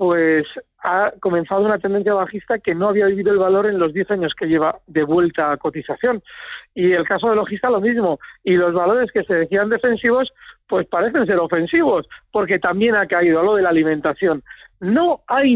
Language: Spanish